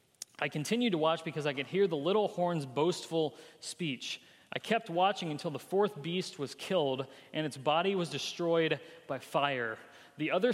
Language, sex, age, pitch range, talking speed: English, male, 30-49, 140-180 Hz, 175 wpm